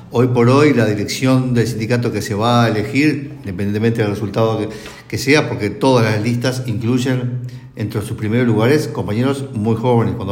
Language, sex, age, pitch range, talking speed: Spanish, male, 50-69, 105-130 Hz, 180 wpm